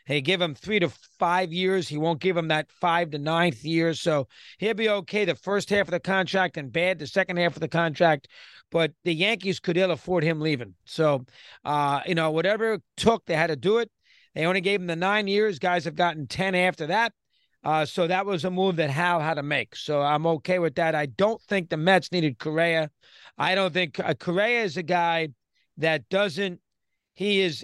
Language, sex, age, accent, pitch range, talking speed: English, male, 40-59, American, 155-190 Hz, 220 wpm